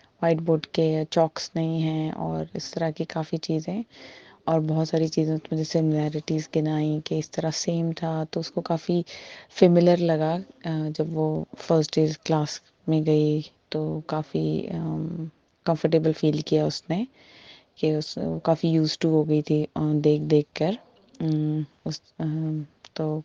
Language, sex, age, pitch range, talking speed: Urdu, female, 20-39, 155-165 Hz, 150 wpm